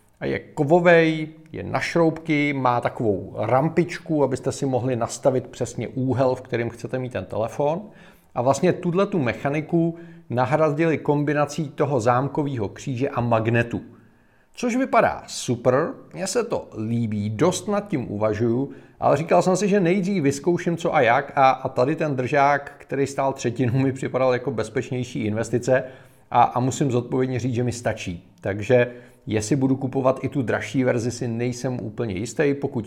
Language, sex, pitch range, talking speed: Czech, male, 115-145 Hz, 155 wpm